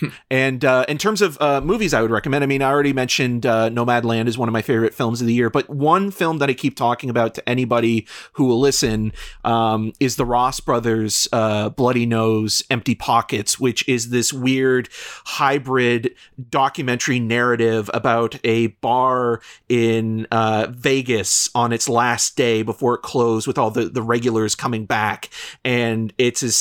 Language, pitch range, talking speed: English, 115-130 Hz, 180 wpm